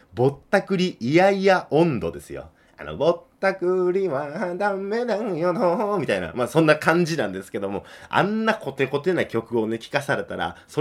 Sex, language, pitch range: male, Japanese, 115-175 Hz